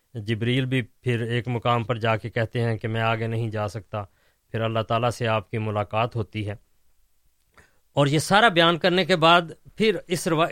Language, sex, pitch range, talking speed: Urdu, male, 120-155 Hz, 200 wpm